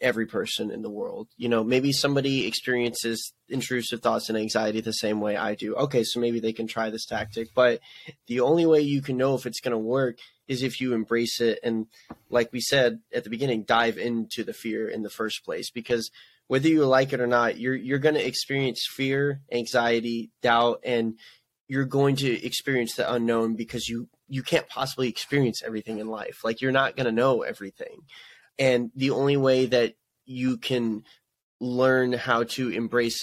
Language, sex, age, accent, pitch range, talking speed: English, male, 20-39, American, 115-135 Hz, 195 wpm